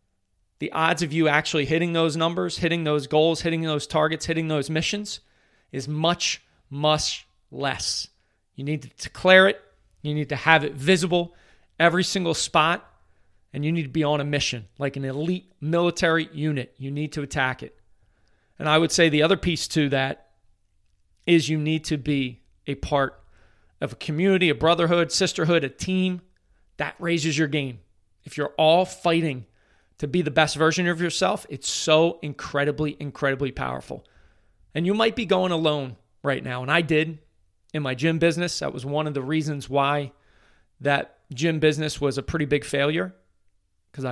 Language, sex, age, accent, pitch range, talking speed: English, male, 40-59, American, 125-165 Hz, 175 wpm